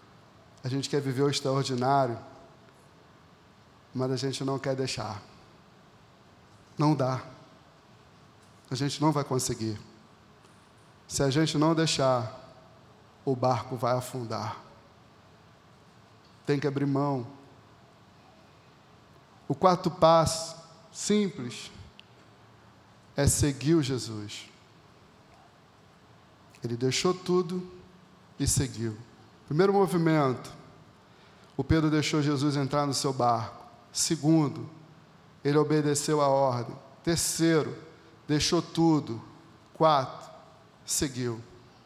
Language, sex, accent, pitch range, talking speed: Portuguese, male, Brazilian, 130-185 Hz, 95 wpm